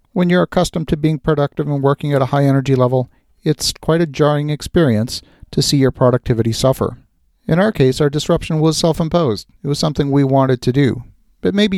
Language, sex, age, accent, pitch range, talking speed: English, male, 50-69, American, 120-155 Hz, 200 wpm